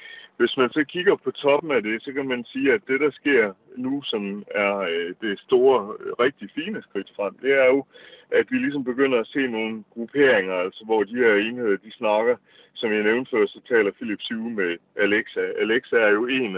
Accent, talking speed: native, 205 wpm